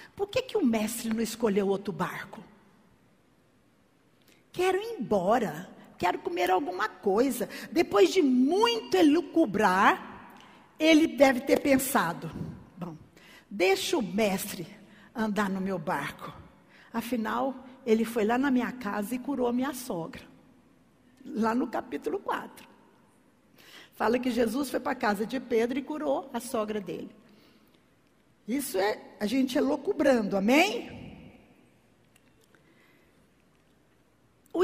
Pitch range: 225-345 Hz